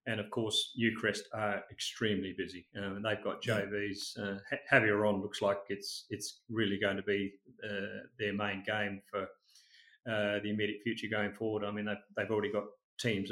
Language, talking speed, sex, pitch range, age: English, 185 wpm, male, 105-125 Hz, 40-59